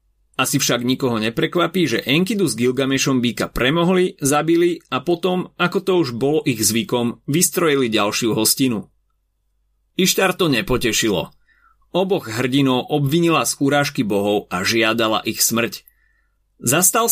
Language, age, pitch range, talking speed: Slovak, 30-49, 115-160 Hz, 125 wpm